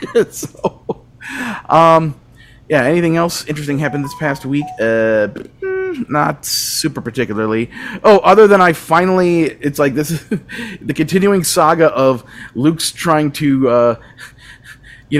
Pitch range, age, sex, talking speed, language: 120-155 Hz, 30-49, male, 125 wpm, English